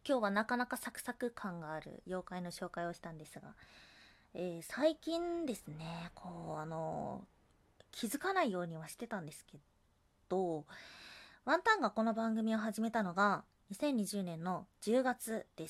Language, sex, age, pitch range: Japanese, female, 20-39, 165-240 Hz